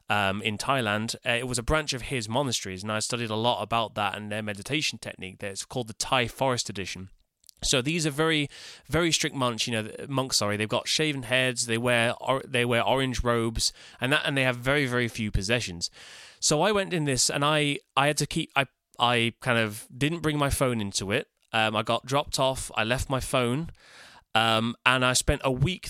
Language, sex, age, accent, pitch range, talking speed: English, male, 20-39, British, 115-145 Hz, 215 wpm